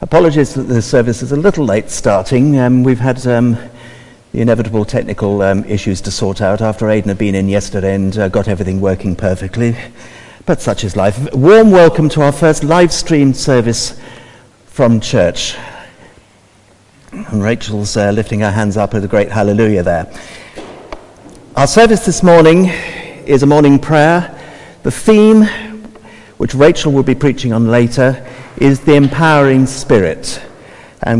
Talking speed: 160 wpm